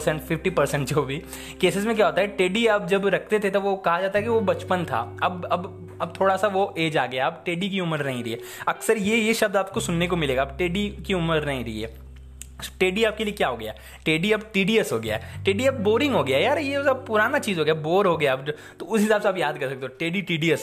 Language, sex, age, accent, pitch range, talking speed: Hindi, male, 20-39, native, 135-195 Hz, 265 wpm